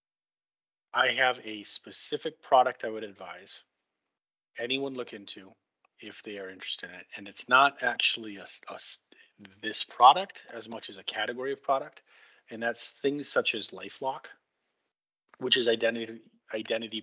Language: English